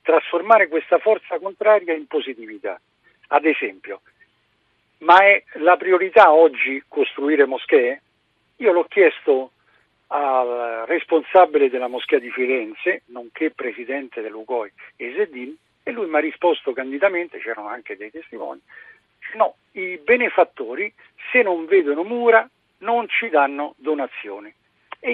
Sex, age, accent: male, 50-69, native